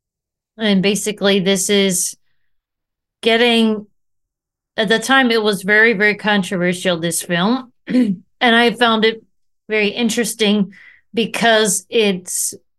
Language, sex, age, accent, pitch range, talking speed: English, female, 30-49, American, 175-215 Hz, 110 wpm